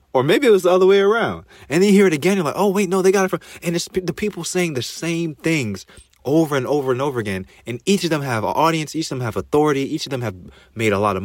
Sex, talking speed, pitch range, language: male, 305 wpm, 100-145 Hz, English